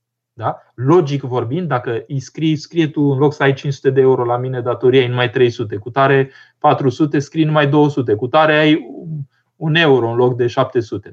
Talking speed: 190 wpm